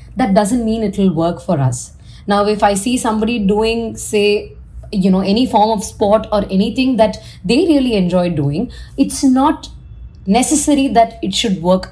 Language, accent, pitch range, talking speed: English, Indian, 185-230 Hz, 175 wpm